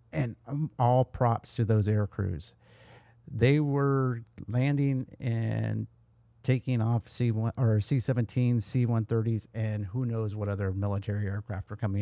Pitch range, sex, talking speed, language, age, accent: 110-125 Hz, male, 125 wpm, English, 50-69, American